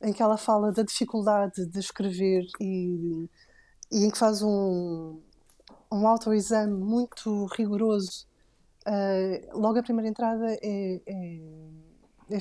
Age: 20-39